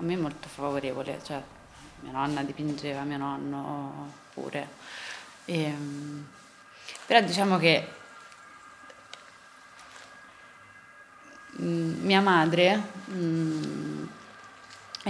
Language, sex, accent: Italian, female, native